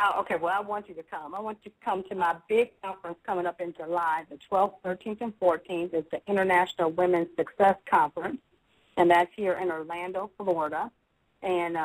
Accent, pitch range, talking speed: American, 170-200 Hz, 190 wpm